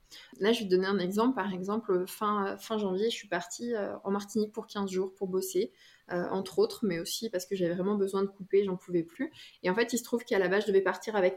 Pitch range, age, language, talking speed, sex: 190-230 Hz, 20-39, French, 270 wpm, female